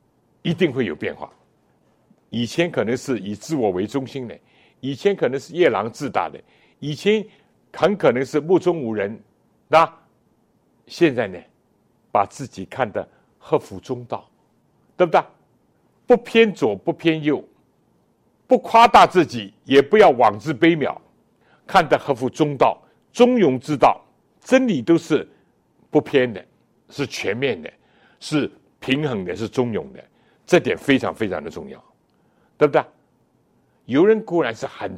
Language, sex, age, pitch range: Chinese, male, 60-79, 125-180 Hz